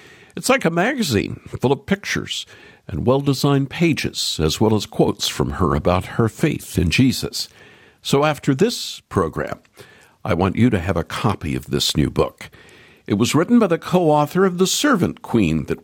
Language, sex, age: English, male, 60-79